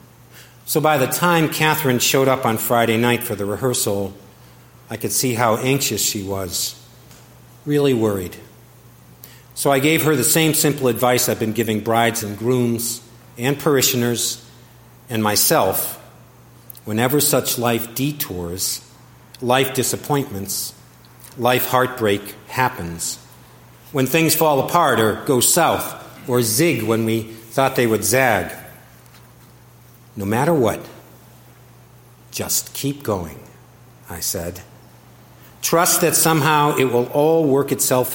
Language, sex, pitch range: English, male, 110-130 Hz